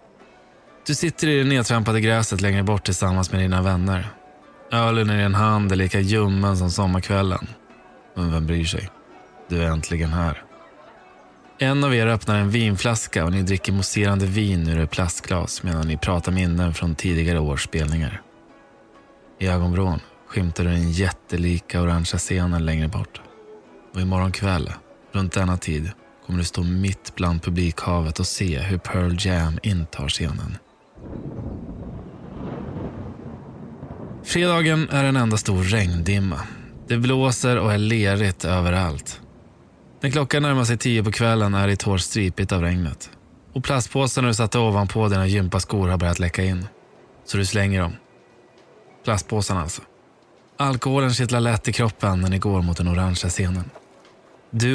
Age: 20-39